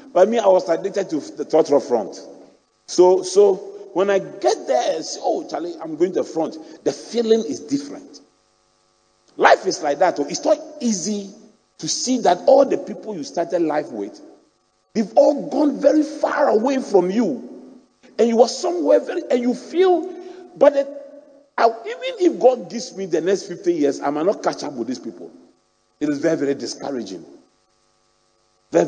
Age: 40-59